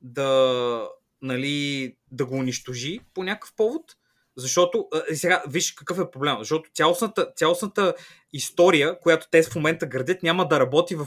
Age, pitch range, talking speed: 20-39, 145-185 Hz, 155 wpm